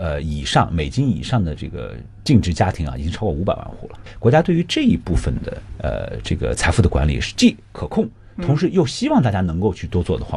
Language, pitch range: Chinese, 85-125 Hz